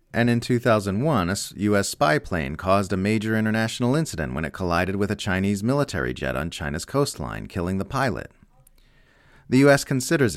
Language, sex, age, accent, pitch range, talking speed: English, male, 30-49, American, 85-120 Hz, 170 wpm